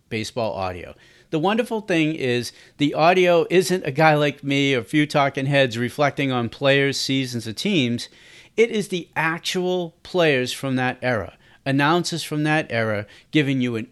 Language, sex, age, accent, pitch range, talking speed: English, male, 40-59, American, 125-175 Hz, 170 wpm